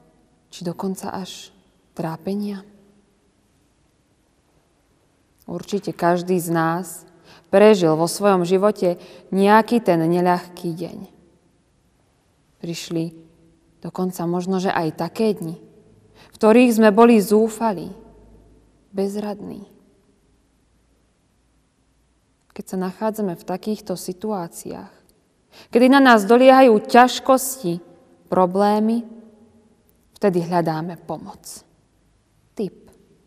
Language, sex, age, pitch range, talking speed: Slovak, female, 20-39, 180-220 Hz, 80 wpm